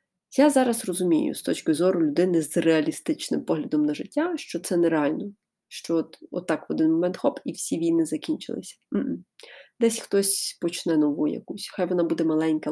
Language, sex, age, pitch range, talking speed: Ukrainian, female, 30-49, 165-255 Hz, 170 wpm